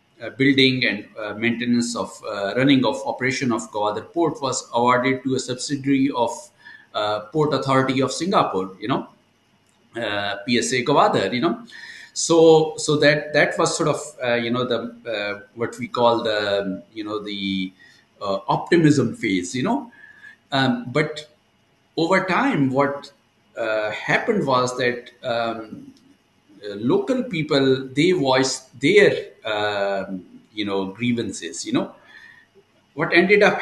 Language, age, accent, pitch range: English, 50-69, Indian, 115-155 Hz